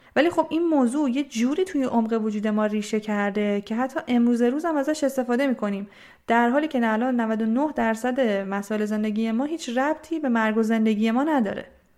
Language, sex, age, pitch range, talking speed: Persian, female, 30-49, 210-255 Hz, 185 wpm